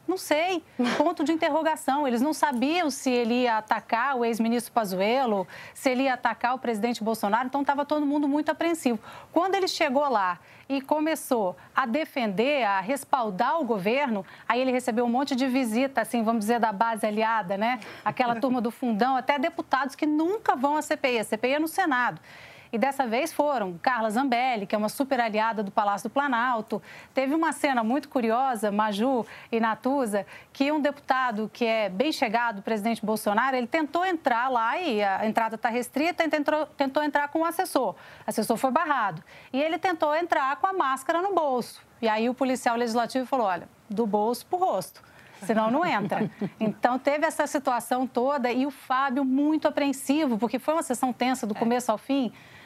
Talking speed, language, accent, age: 185 wpm, Portuguese, Brazilian, 30-49